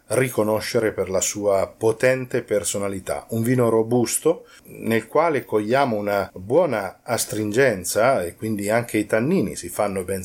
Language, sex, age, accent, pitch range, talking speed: Italian, male, 40-59, native, 105-125 Hz, 135 wpm